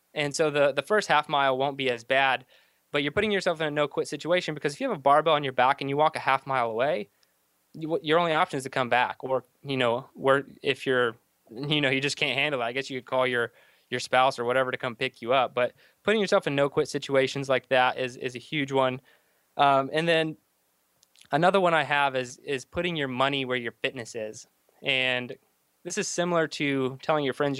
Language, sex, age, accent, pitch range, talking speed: English, male, 20-39, American, 125-150 Hz, 240 wpm